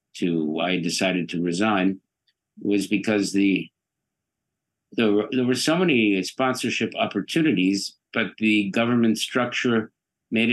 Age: 50-69